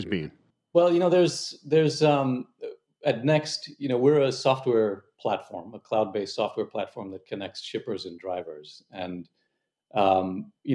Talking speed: 145 wpm